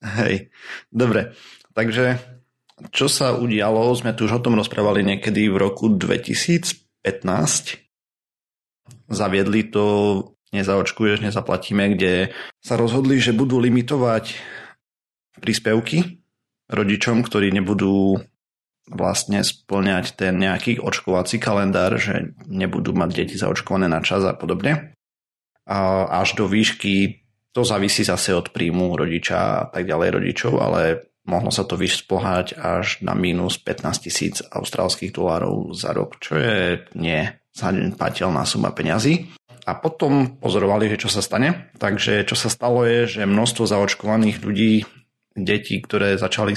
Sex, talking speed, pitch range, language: male, 125 wpm, 100-120 Hz, Slovak